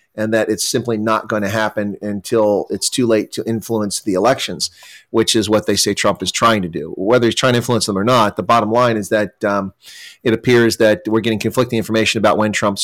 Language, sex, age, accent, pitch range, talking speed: English, male, 30-49, American, 105-120 Hz, 235 wpm